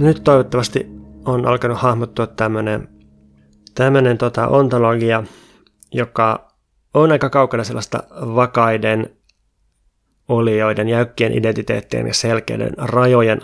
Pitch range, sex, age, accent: 105-120 Hz, male, 20-39, native